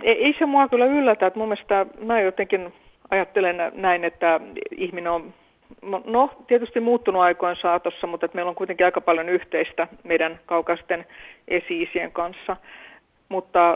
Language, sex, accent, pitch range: Finnish, female, native, 170-200 Hz